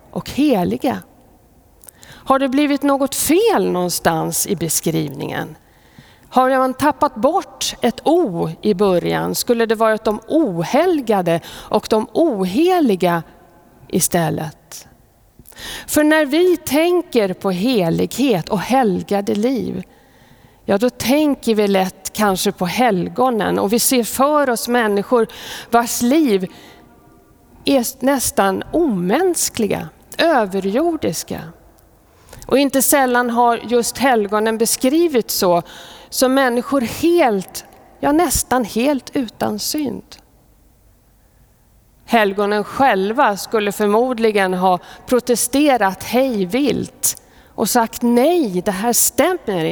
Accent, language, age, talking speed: native, Swedish, 50-69, 105 wpm